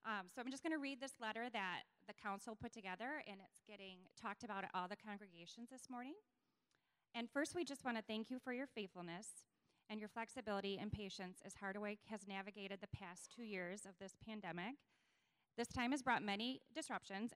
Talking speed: 200 wpm